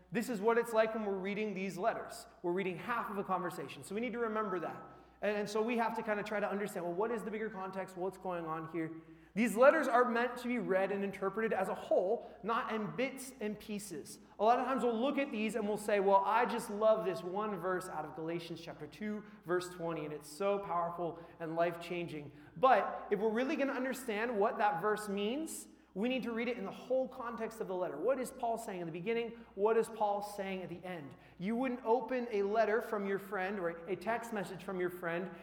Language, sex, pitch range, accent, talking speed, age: English, male, 180-225 Hz, American, 240 wpm, 30-49